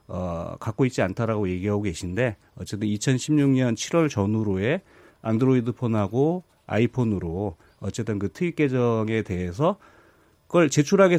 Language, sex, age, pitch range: Korean, male, 40-59, 105-155 Hz